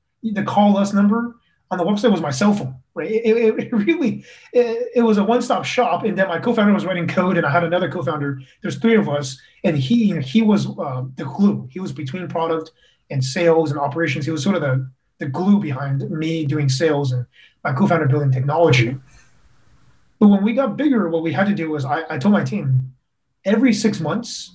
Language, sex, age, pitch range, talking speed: English, male, 30-49, 135-200 Hz, 220 wpm